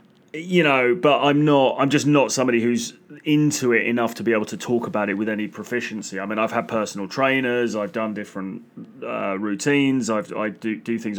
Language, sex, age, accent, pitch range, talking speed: English, male, 30-49, British, 110-130 Hz, 210 wpm